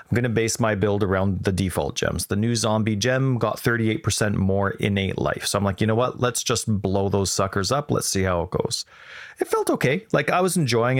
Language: English